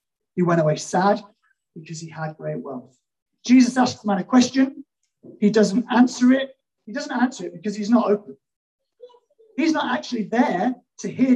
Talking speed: 175 wpm